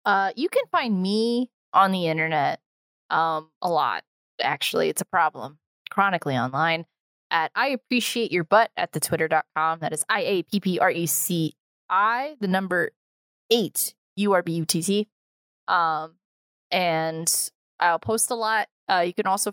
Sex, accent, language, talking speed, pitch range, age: female, American, English, 120 wpm, 165-225 Hz, 20-39